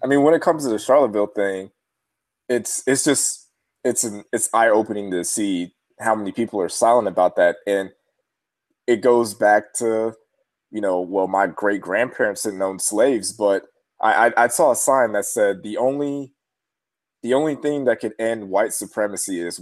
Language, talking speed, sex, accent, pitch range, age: English, 185 wpm, male, American, 105-145 Hz, 20-39